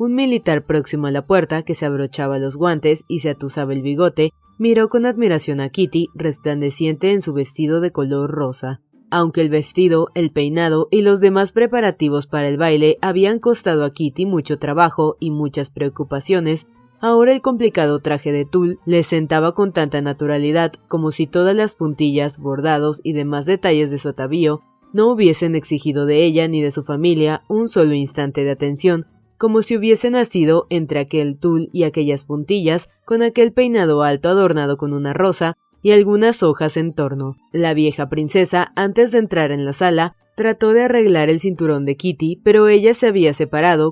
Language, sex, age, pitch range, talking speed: Spanish, female, 20-39, 150-185 Hz, 180 wpm